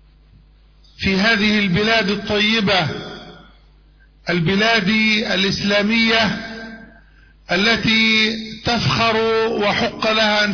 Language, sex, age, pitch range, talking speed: Malay, male, 50-69, 210-235 Hz, 65 wpm